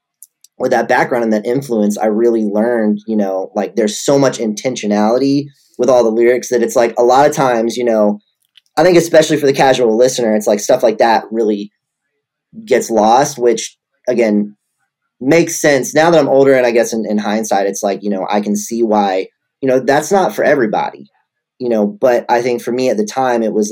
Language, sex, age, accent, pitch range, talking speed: English, male, 30-49, American, 105-135 Hz, 215 wpm